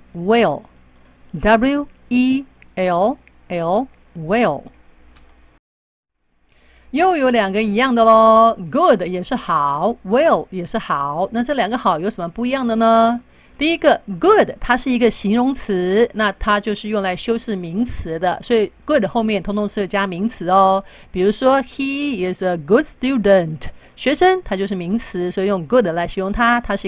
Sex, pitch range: female, 175-235 Hz